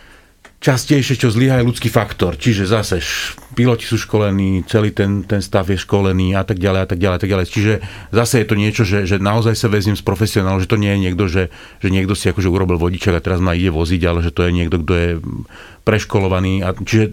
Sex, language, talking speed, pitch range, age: male, Slovak, 225 wpm, 100-120 Hz, 40-59